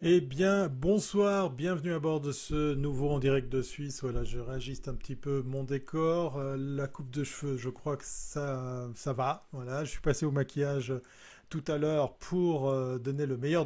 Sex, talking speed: male, 200 wpm